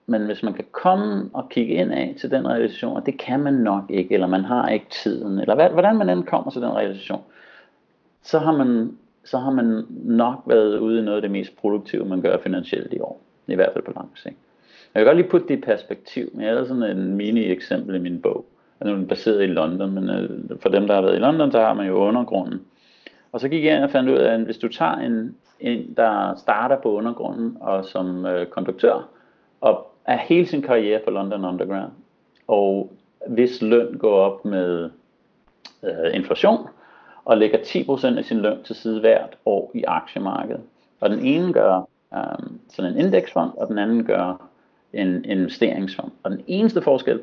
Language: Danish